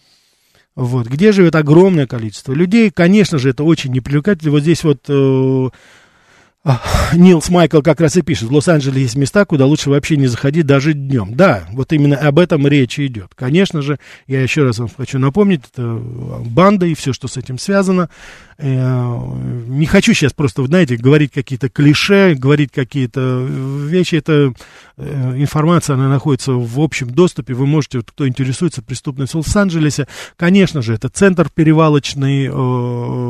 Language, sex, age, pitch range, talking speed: Russian, male, 40-59, 130-165 Hz, 155 wpm